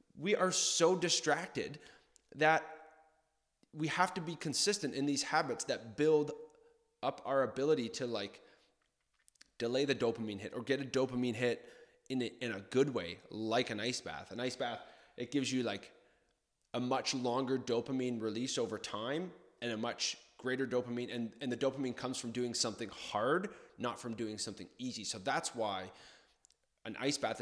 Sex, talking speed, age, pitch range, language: male, 170 wpm, 20-39, 110-135 Hz, English